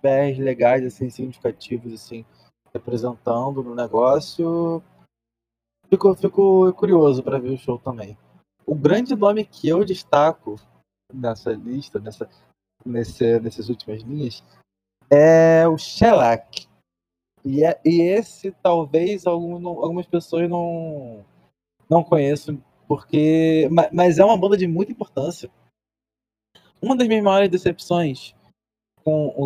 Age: 20-39